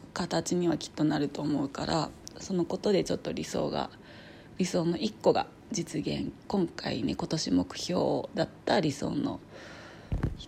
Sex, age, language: female, 30-49, Japanese